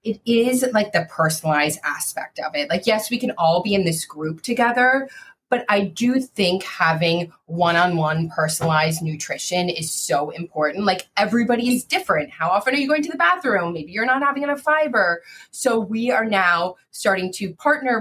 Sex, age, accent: female, 20-39, American